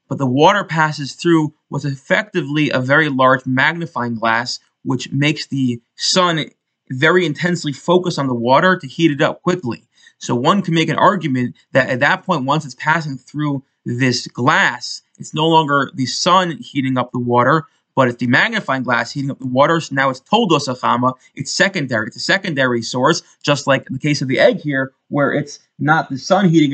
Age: 20-39